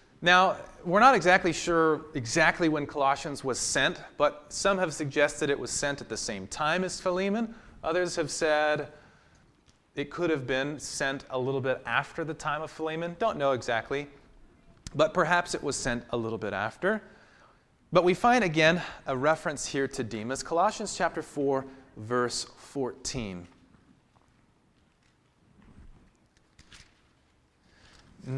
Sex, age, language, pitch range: male, 30-49, English, 130-170 Hz